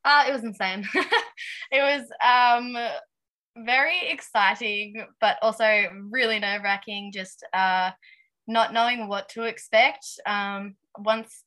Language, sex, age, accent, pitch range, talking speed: English, female, 20-39, Australian, 195-230 Hz, 115 wpm